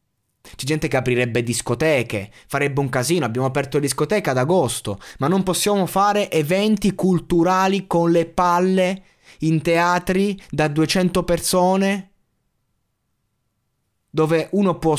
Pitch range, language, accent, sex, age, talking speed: 110-165 Hz, Italian, native, male, 20-39, 125 wpm